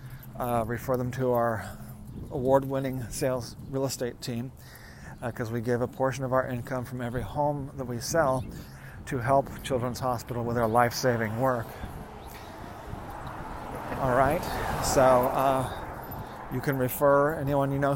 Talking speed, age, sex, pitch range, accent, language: 145 wpm, 40-59, male, 120-140 Hz, American, English